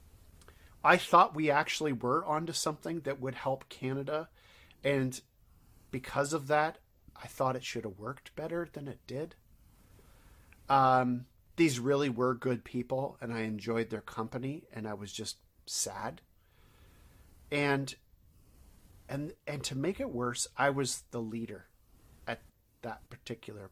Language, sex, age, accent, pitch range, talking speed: English, male, 40-59, American, 105-135 Hz, 140 wpm